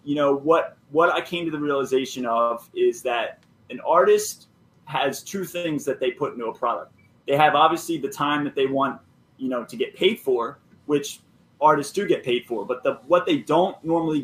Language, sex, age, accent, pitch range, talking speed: English, male, 20-39, American, 130-165 Hz, 205 wpm